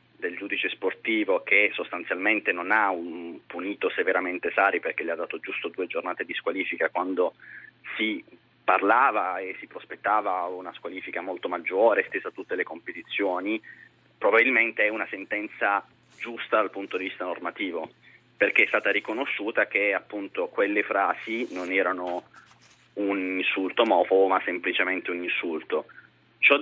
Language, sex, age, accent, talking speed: Italian, male, 30-49, native, 140 wpm